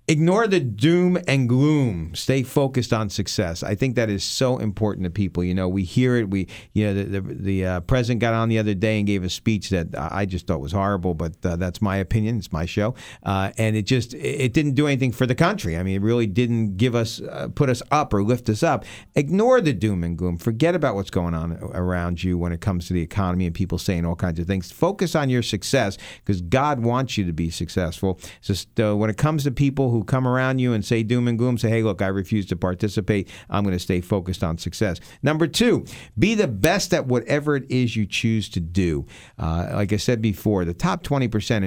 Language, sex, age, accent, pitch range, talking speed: English, male, 50-69, American, 95-125 Hz, 240 wpm